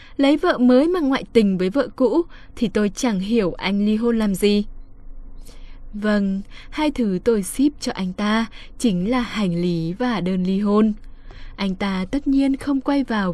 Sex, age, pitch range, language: female, 10-29, 185-245 Hz, Vietnamese